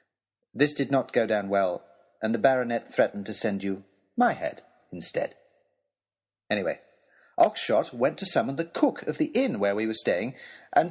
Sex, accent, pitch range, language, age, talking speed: male, British, 135-230 Hz, English, 40-59, 170 wpm